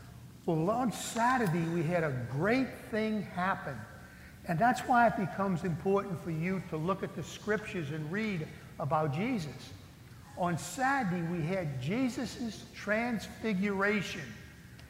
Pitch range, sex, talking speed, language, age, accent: 170-220 Hz, male, 130 wpm, English, 60-79, American